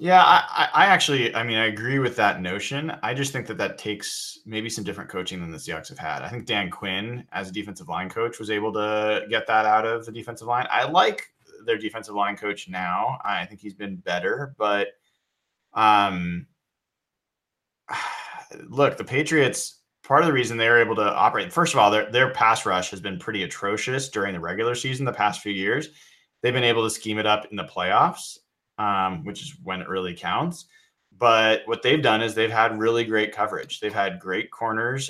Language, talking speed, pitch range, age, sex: English, 205 wpm, 100-135 Hz, 20-39, male